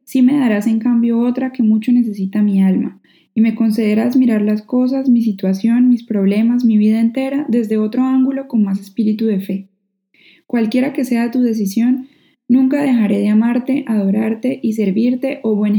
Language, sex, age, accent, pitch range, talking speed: Spanish, female, 10-29, Colombian, 205-240 Hz, 175 wpm